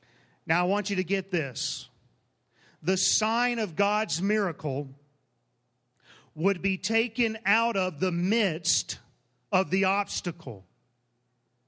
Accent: American